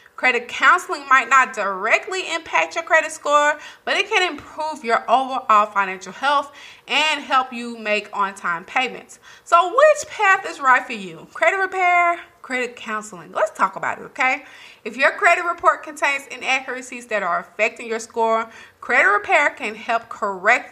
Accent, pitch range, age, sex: American, 220-300 Hz, 30-49, female